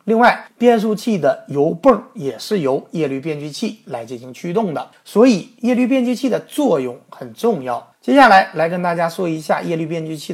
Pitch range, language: 145-220 Hz, Chinese